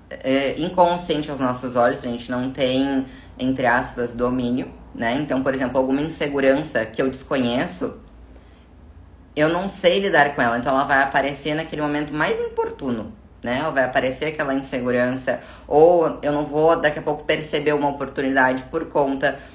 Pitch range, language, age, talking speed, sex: 120-150 Hz, Portuguese, 10-29, 165 wpm, female